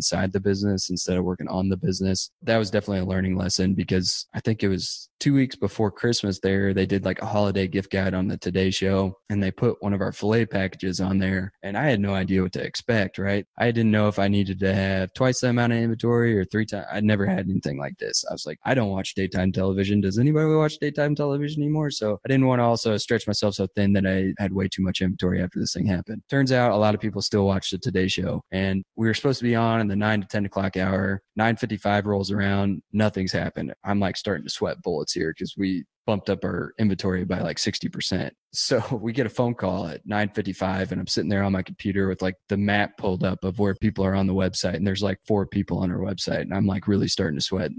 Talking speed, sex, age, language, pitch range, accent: 255 wpm, male, 20-39, English, 95-110 Hz, American